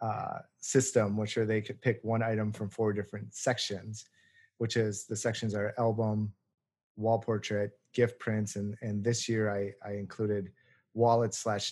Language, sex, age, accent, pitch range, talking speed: English, male, 30-49, American, 110-125 Hz, 165 wpm